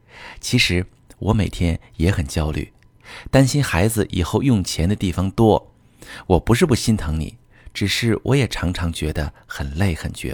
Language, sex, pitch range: Chinese, male, 90-125 Hz